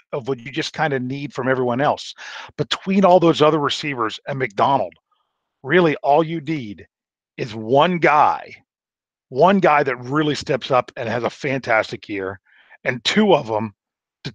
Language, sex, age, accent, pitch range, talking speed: English, male, 40-59, American, 115-150 Hz, 165 wpm